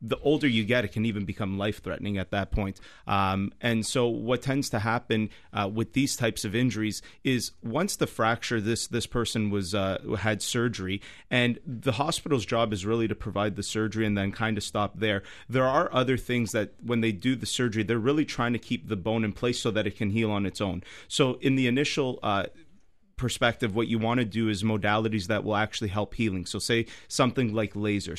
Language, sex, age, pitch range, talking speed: English, male, 30-49, 105-120 Hz, 215 wpm